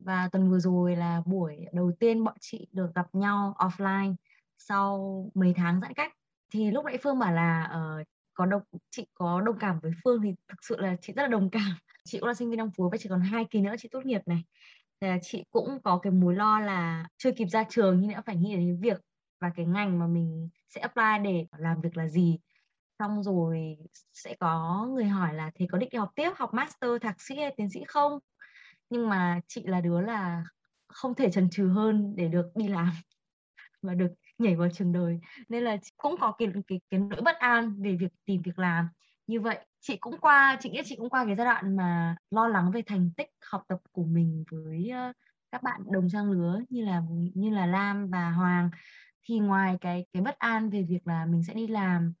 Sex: female